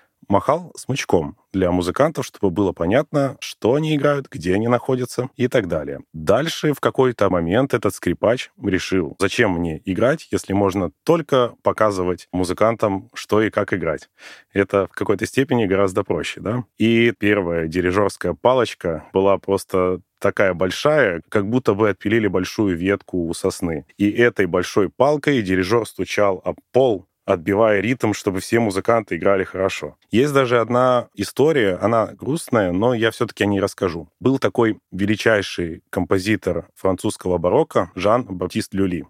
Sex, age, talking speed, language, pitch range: male, 20-39, 145 wpm, Russian, 95-120 Hz